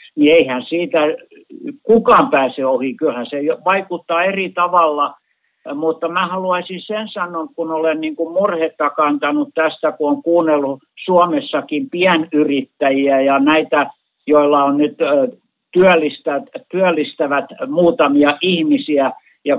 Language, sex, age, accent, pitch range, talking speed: Finnish, male, 60-79, native, 145-190 Hz, 115 wpm